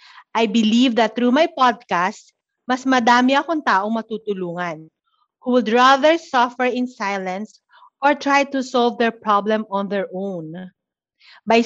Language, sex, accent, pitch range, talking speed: Filipino, female, native, 205-280 Hz, 140 wpm